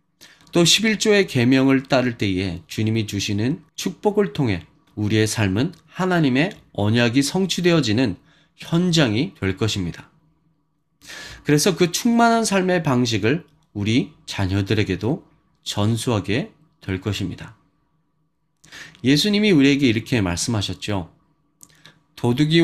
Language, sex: Korean, male